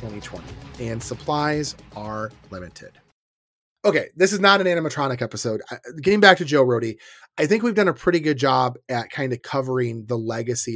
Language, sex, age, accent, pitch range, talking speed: English, male, 30-49, American, 115-155 Hz, 175 wpm